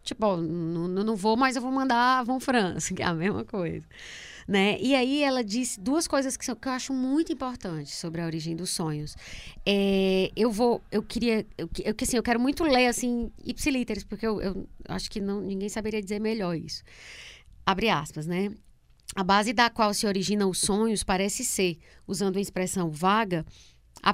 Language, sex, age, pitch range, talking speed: Portuguese, female, 20-39, 190-245 Hz, 180 wpm